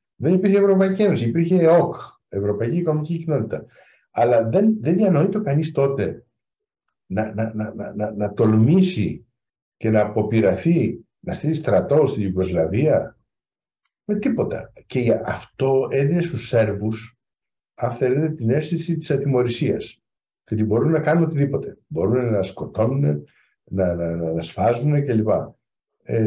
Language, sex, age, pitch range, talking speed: Greek, male, 60-79, 110-155 Hz, 135 wpm